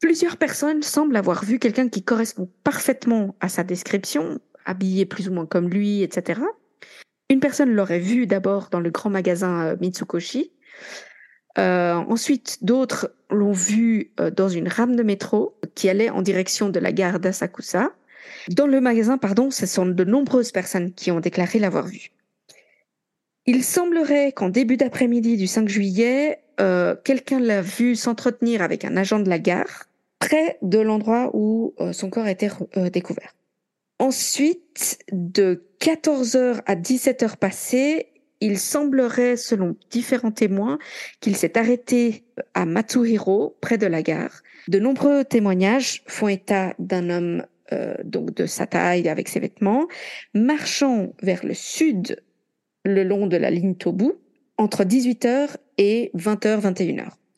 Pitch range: 190-255 Hz